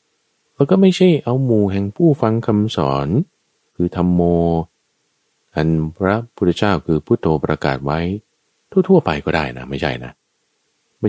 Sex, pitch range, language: male, 75-115 Hz, Thai